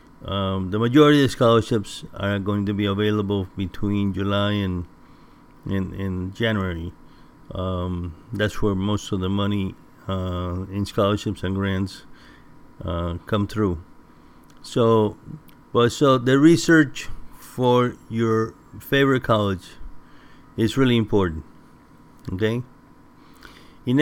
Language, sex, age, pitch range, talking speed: English, male, 60-79, 95-120 Hz, 115 wpm